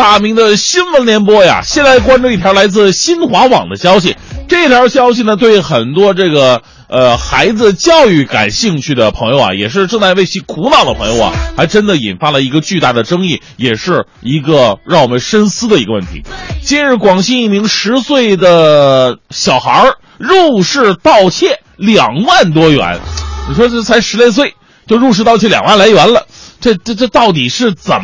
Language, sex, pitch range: Chinese, male, 150-235 Hz